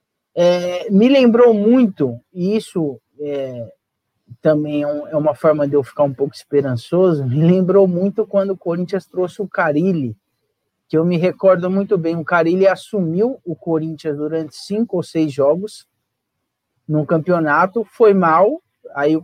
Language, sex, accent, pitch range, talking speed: Portuguese, male, Brazilian, 145-210 Hz, 145 wpm